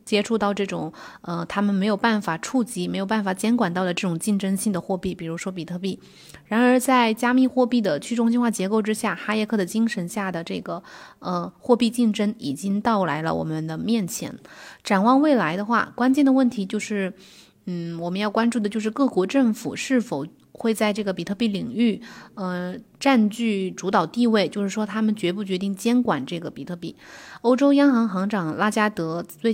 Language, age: Chinese, 20-39